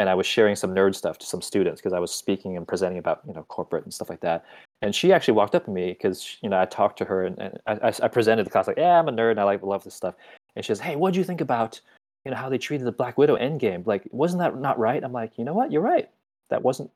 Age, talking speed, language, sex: 20-39, 310 wpm, English, male